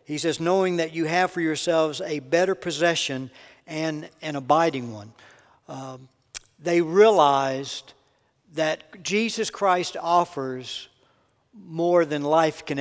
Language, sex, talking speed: English, male, 120 wpm